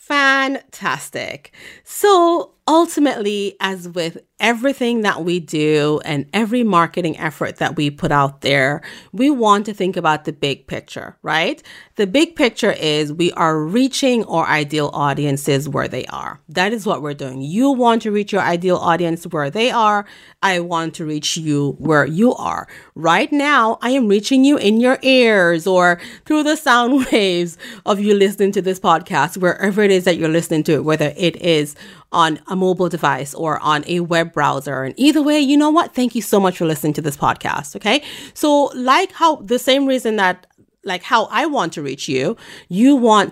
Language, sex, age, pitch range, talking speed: English, female, 30-49, 155-250 Hz, 185 wpm